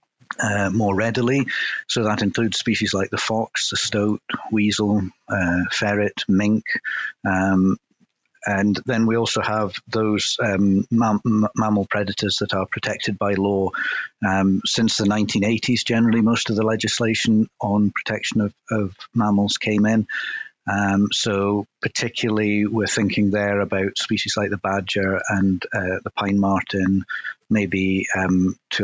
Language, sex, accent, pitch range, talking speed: English, male, British, 100-115 Hz, 135 wpm